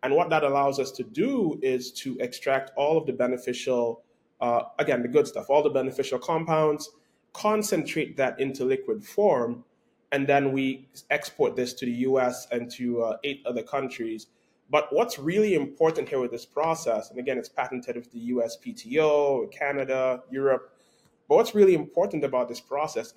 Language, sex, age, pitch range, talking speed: English, male, 20-39, 125-160 Hz, 175 wpm